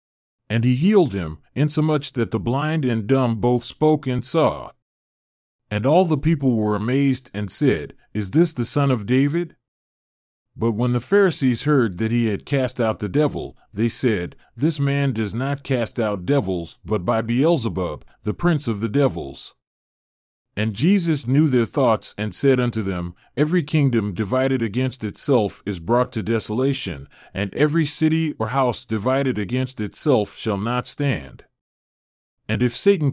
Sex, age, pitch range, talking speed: male, 40-59, 110-145 Hz, 160 wpm